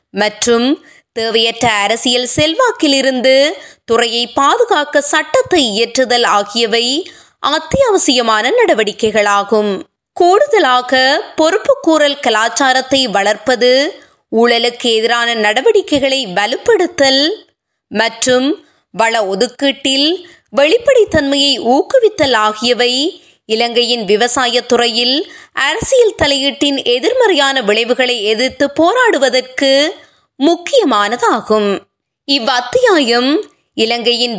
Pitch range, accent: 235-325 Hz, native